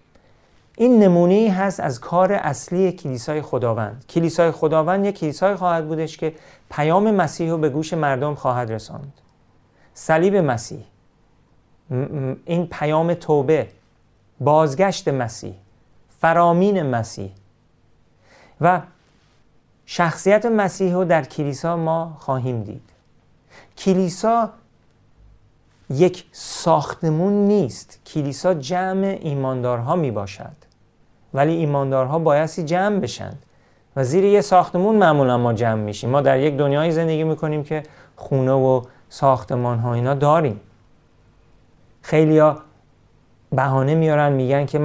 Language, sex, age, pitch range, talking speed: Persian, male, 40-59, 130-170 Hz, 110 wpm